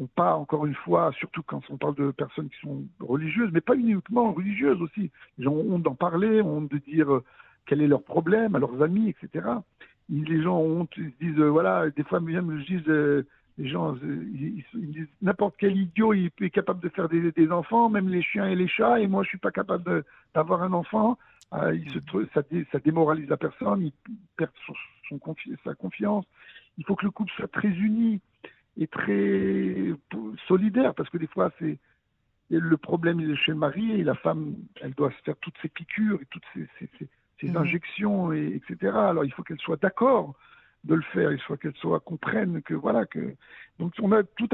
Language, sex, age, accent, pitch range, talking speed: French, male, 60-79, French, 155-200 Hz, 210 wpm